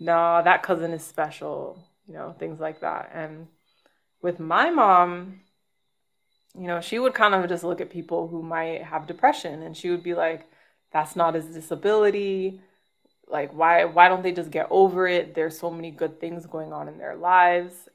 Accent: American